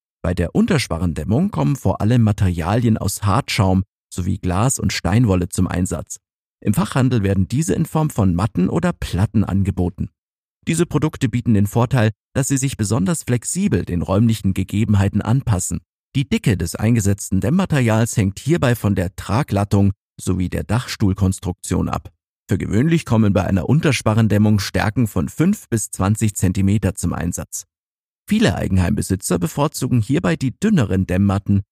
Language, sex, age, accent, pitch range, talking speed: German, male, 50-69, German, 95-130 Hz, 140 wpm